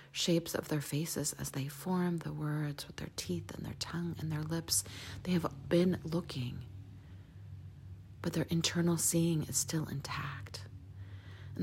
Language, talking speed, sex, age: English, 155 wpm, female, 40-59